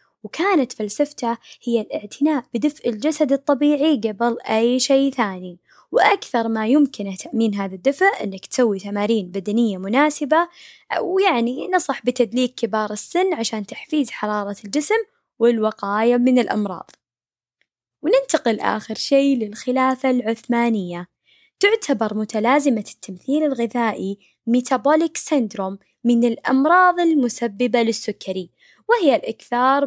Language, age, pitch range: Arabic, 20-39, 215-295 Hz